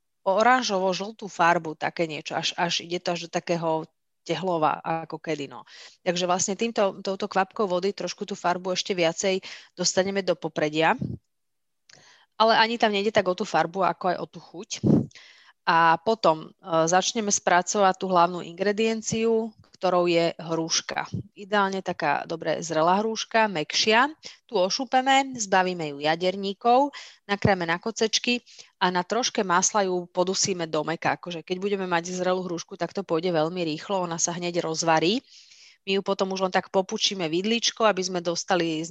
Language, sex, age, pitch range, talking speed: Slovak, female, 30-49, 170-200 Hz, 155 wpm